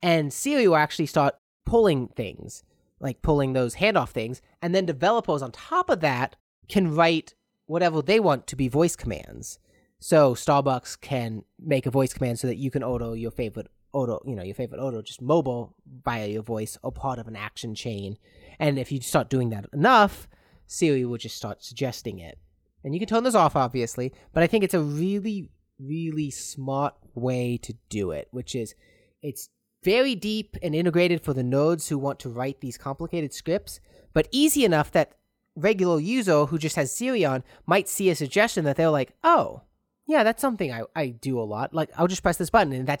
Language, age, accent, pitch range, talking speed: English, 30-49, American, 125-180 Hz, 200 wpm